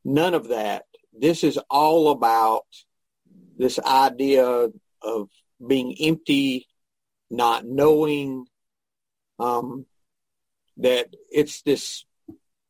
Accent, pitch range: American, 125-155 Hz